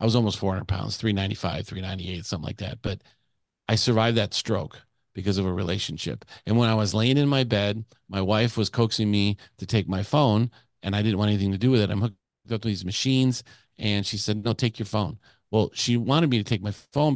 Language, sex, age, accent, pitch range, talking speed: English, male, 50-69, American, 100-115 Hz, 230 wpm